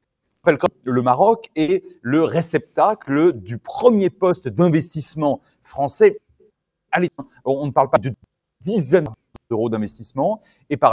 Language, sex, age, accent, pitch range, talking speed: French, male, 40-59, French, 125-185 Hz, 115 wpm